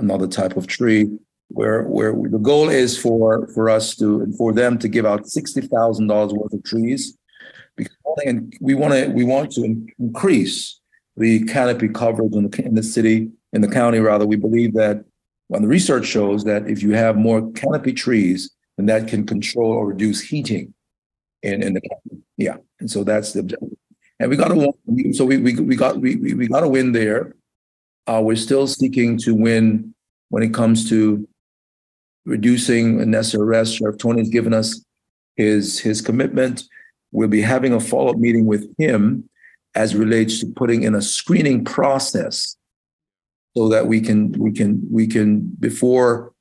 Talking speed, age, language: 180 wpm, 50-69, English